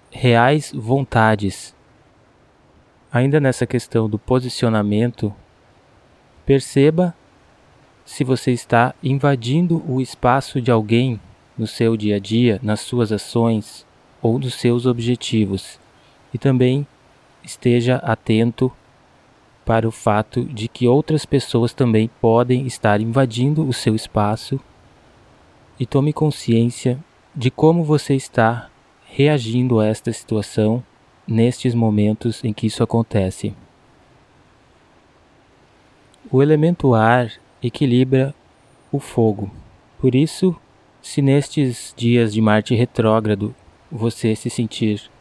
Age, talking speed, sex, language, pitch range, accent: 20-39, 105 wpm, male, Portuguese, 110-135 Hz, Brazilian